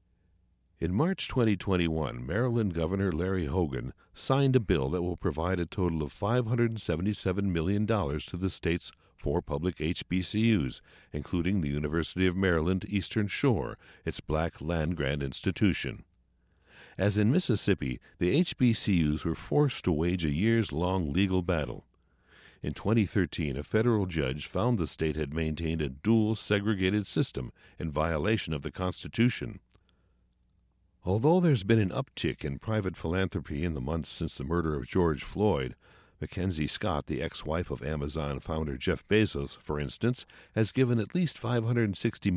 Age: 60-79